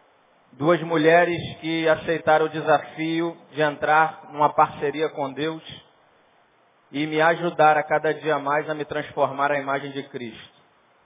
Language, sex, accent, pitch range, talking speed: Portuguese, male, Brazilian, 140-170 Hz, 140 wpm